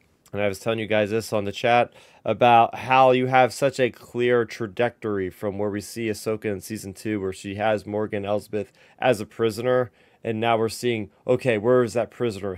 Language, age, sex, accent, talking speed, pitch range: English, 30-49, male, American, 205 wpm, 110-140 Hz